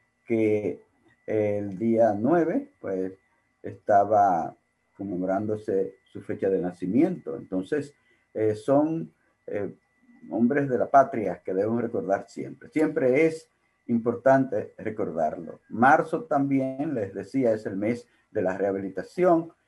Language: Spanish